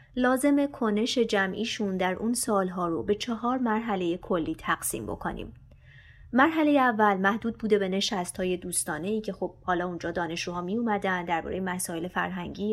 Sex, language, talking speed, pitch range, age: female, Persian, 145 wpm, 185-235 Hz, 30-49